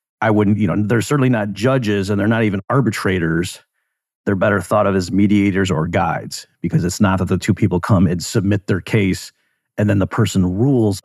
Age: 40-59